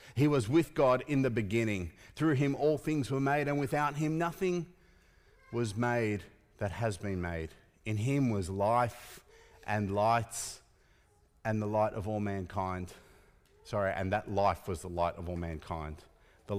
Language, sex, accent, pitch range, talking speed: English, male, Australian, 95-135 Hz, 165 wpm